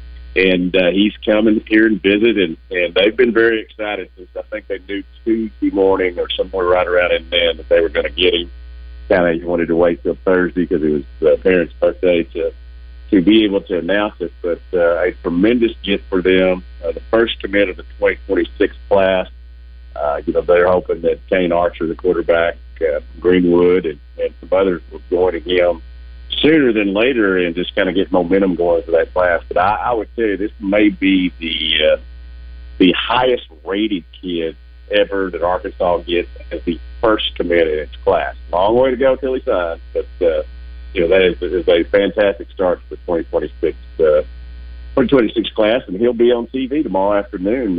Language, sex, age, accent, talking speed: English, male, 50-69, American, 195 wpm